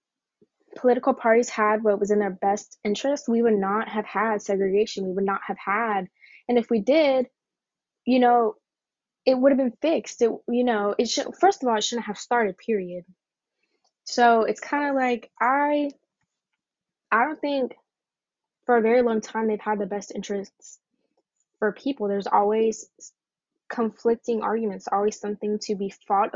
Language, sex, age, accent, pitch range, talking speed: English, female, 10-29, American, 205-240 Hz, 165 wpm